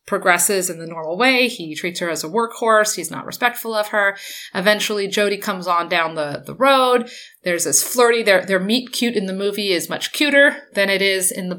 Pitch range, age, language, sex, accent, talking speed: 185-225 Hz, 30-49, English, female, American, 220 wpm